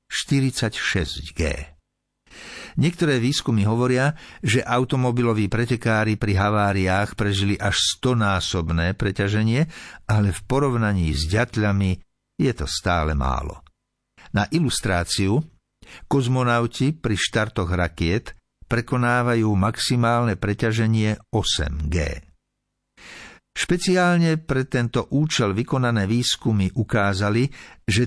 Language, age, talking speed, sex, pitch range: Slovak, 60-79, 90 wpm, male, 95-125 Hz